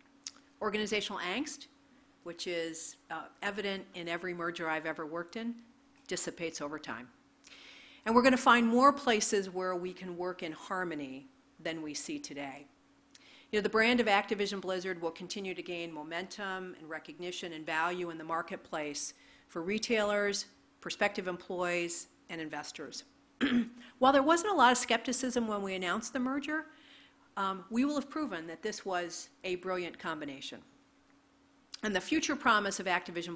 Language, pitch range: English, 165-235 Hz